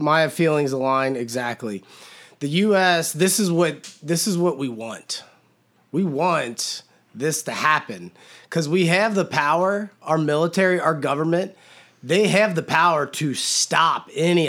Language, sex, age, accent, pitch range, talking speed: English, male, 30-49, American, 140-175 Hz, 145 wpm